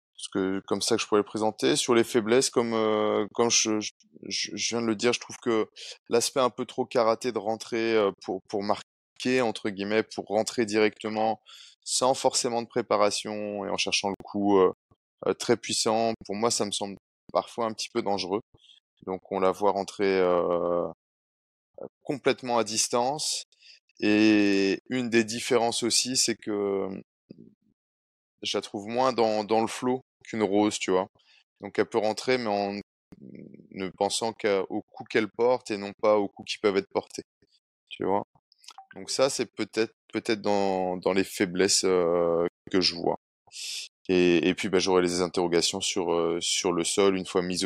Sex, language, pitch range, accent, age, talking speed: male, French, 95-115 Hz, French, 20-39, 180 wpm